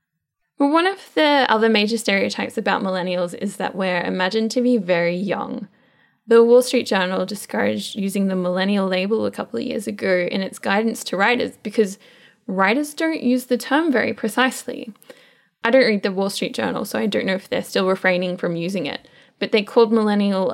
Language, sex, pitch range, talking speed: English, female, 200-260 Hz, 195 wpm